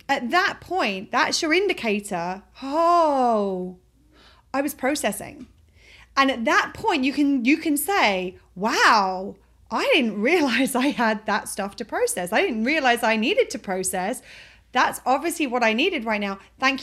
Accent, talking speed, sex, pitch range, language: British, 155 wpm, female, 215-275 Hz, English